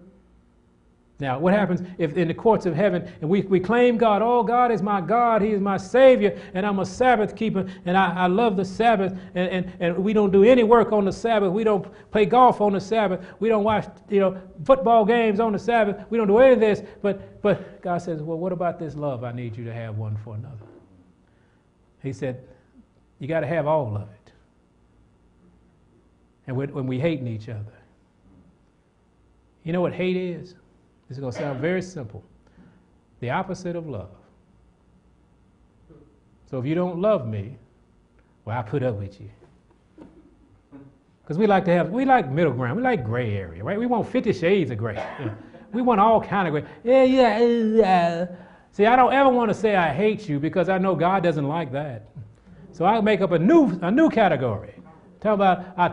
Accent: American